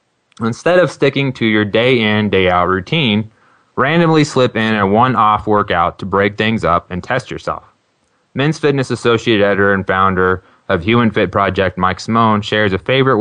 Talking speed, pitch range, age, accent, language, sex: 165 wpm, 100-120 Hz, 20-39, American, English, male